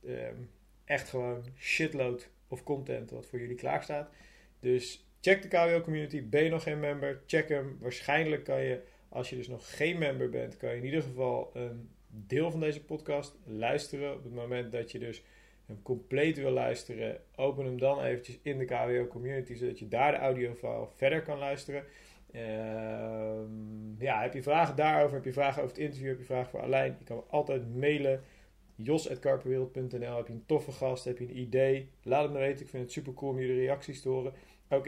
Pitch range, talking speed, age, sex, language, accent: 125-145 Hz, 200 wpm, 40-59, male, Dutch, Dutch